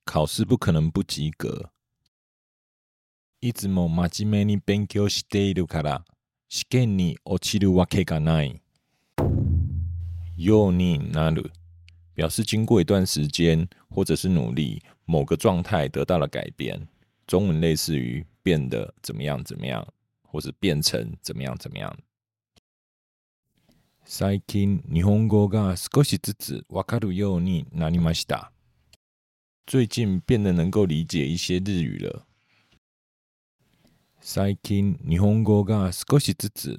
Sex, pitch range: male, 85-105 Hz